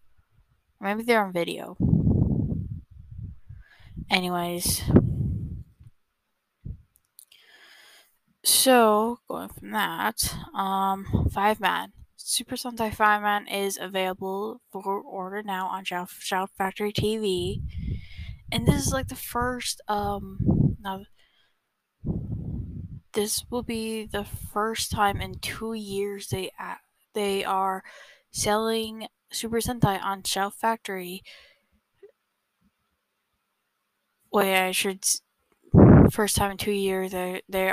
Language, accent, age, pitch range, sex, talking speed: English, American, 10-29, 185-210 Hz, female, 105 wpm